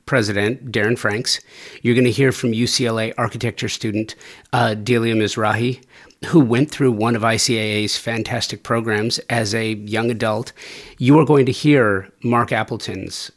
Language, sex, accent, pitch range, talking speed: English, male, American, 105-130 Hz, 145 wpm